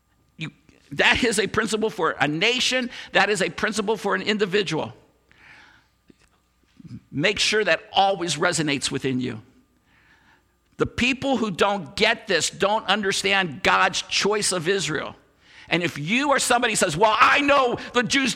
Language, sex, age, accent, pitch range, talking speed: English, male, 50-69, American, 160-225 Hz, 145 wpm